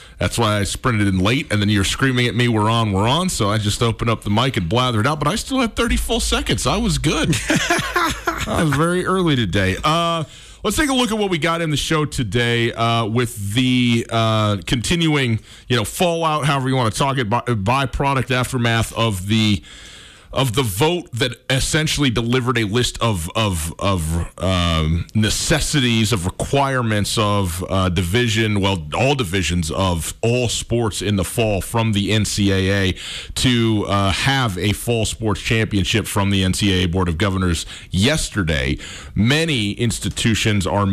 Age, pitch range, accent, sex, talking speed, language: 40-59, 95-125 Hz, American, male, 175 wpm, English